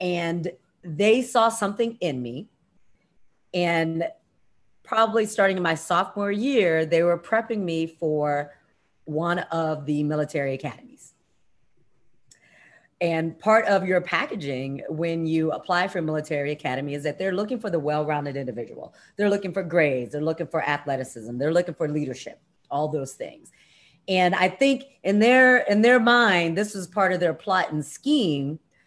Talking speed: 155 wpm